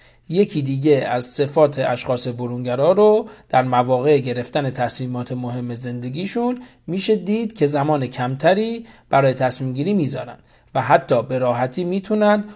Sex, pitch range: male, 130-190 Hz